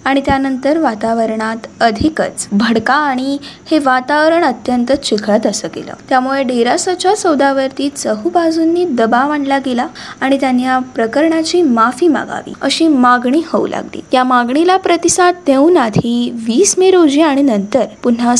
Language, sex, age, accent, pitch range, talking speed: Marathi, female, 20-39, native, 245-330 Hz, 120 wpm